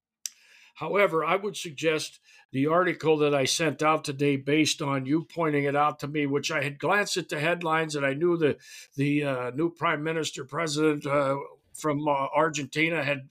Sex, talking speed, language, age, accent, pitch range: male, 185 wpm, English, 60-79, American, 140-175 Hz